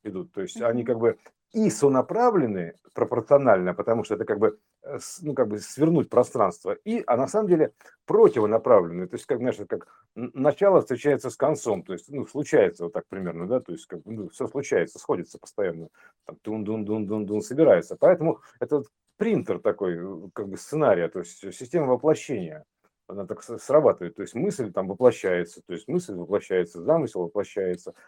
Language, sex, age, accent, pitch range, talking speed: Russian, male, 50-69, native, 110-160 Hz, 165 wpm